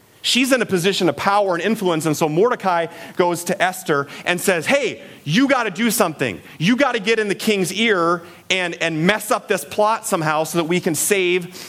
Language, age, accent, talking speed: English, 30-49, American, 215 wpm